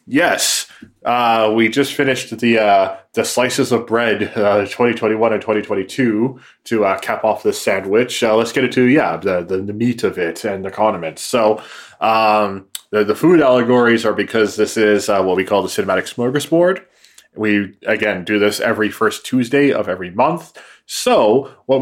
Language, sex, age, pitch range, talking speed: English, male, 20-39, 100-120 Hz, 175 wpm